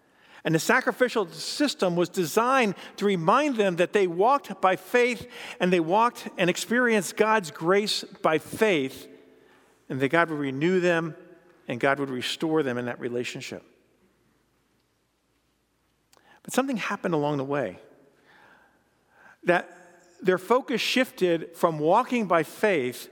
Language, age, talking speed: English, 50-69, 130 wpm